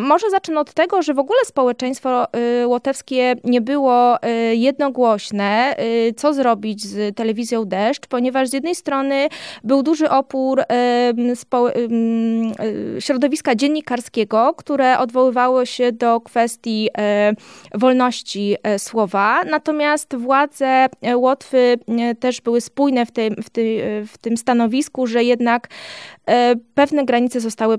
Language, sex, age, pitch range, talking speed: Polish, female, 20-39, 220-265 Hz, 105 wpm